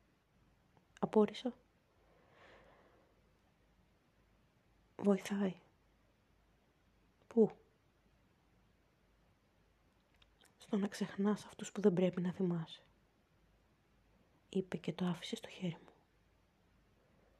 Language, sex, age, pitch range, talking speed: Greek, female, 30-49, 160-205 Hz, 65 wpm